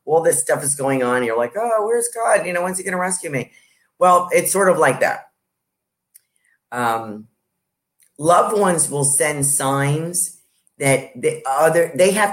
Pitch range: 125-155 Hz